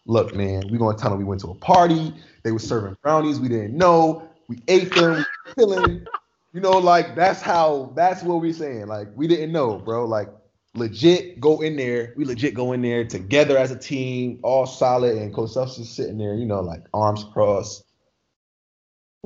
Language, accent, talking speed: English, American, 200 wpm